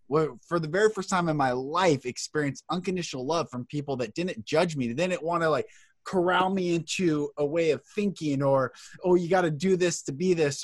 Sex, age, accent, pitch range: male, 20-39, American, 140-185 Hz